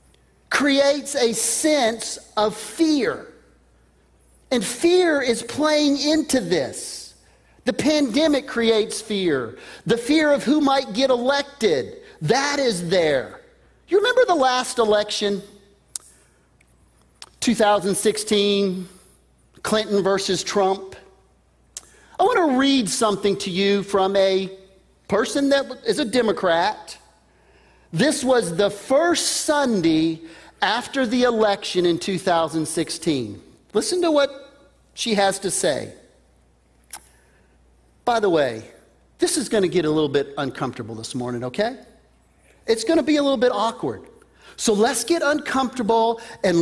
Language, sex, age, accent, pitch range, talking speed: English, male, 40-59, American, 180-280 Hz, 120 wpm